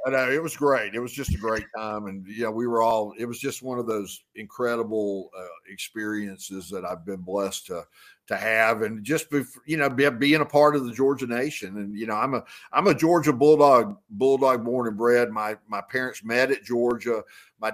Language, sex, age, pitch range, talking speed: English, male, 50-69, 100-125 Hz, 205 wpm